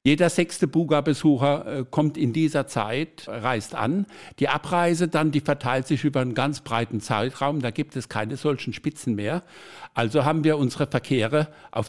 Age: 60-79